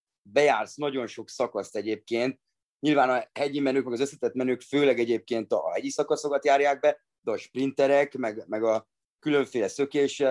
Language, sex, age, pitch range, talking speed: Hungarian, male, 30-49, 120-145 Hz, 165 wpm